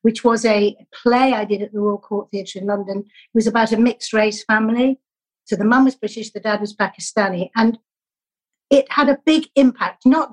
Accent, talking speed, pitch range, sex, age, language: British, 205 wpm, 205-255 Hz, female, 50-69, English